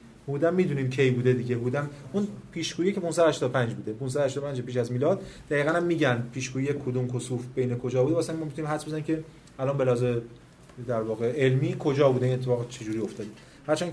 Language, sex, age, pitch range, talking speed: Persian, male, 30-49, 125-155 Hz, 185 wpm